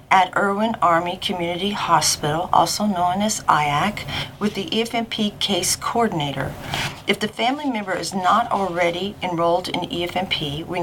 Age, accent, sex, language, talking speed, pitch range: 40-59, American, female, English, 140 wpm, 165-200 Hz